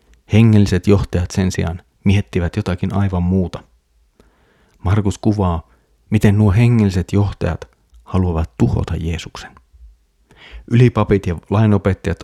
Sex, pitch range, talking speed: male, 80-105 Hz, 100 wpm